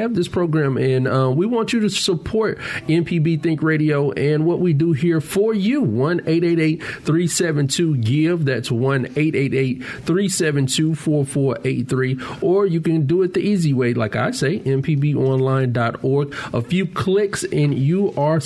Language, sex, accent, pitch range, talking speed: English, male, American, 130-165 Hz, 155 wpm